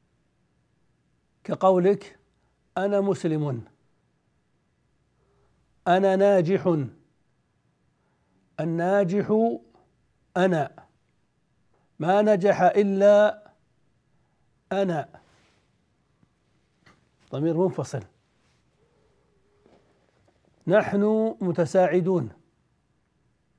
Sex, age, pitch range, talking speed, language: male, 60-79, 165-200 Hz, 40 wpm, Arabic